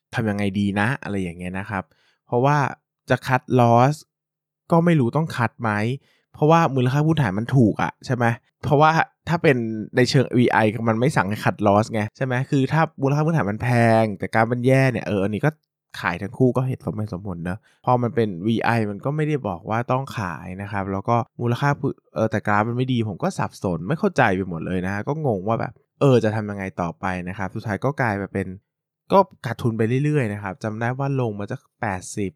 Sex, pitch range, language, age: male, 100-135 Hz, Thai, 20-39